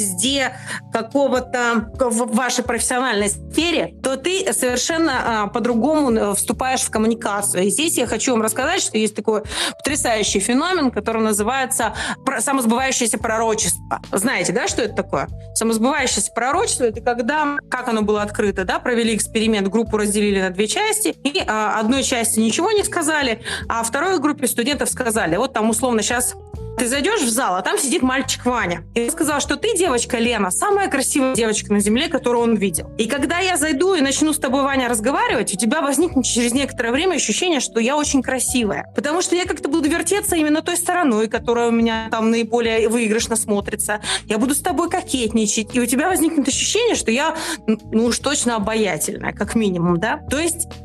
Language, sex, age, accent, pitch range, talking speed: Russian, female, 30-49, native, 220-280 Hz, 175 wpm